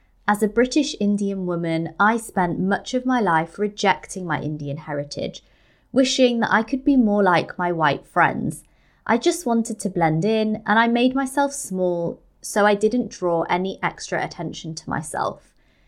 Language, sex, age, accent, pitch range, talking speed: English, female, 20-39, British, 175-240 Hz, 170 wpm